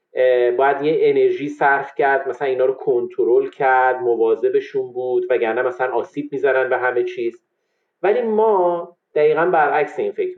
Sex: male